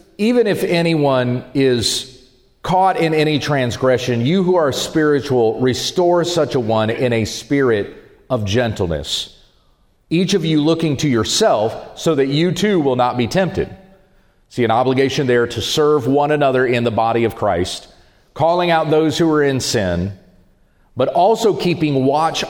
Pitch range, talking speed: 115-165 Hz, 155 wpm